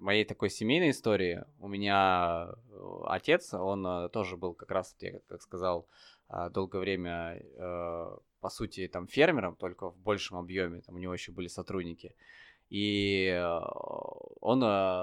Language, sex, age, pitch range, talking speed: Russian, male, 20-39, 90-110 Hz, 130 wpm